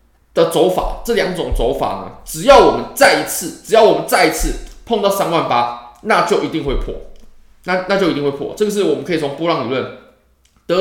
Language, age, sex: Chinese, 20-39, male